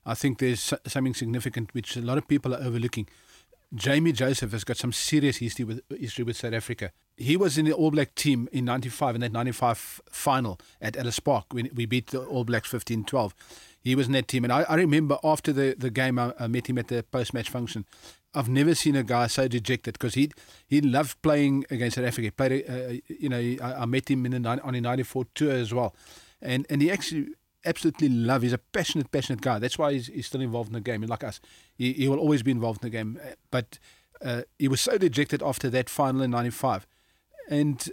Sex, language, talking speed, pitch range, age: male, English, 225 wpm, 120-145 Hz, 40-59